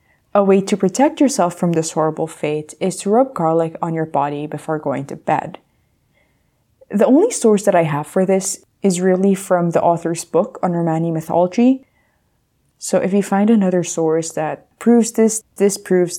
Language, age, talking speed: English, 20-39, 175 wpm